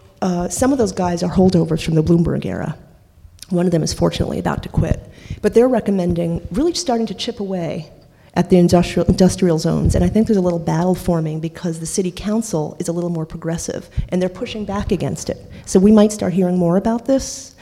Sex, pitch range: female, 170-200 Hz